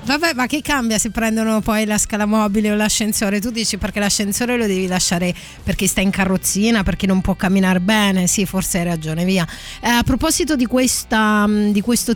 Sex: female